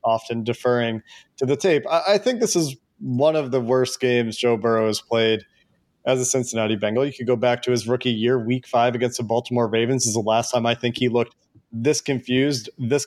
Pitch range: 120-140 Hz